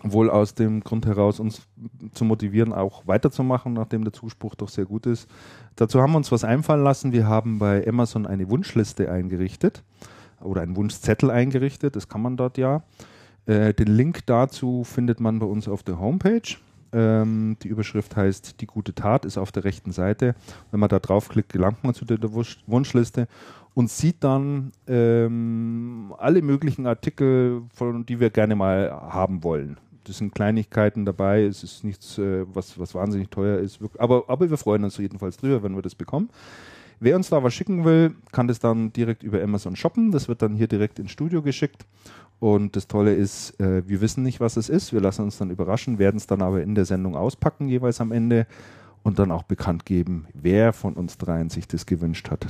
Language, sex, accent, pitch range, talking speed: German, male, German, 95-120 Hz, 195 wpm